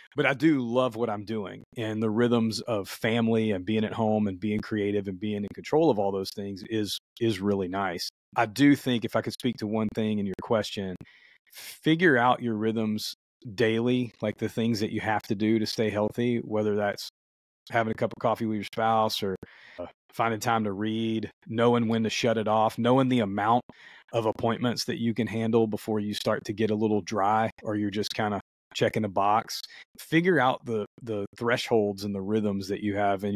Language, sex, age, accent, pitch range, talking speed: English, male, 30-49, American, 105-120 Hz, 215 wpm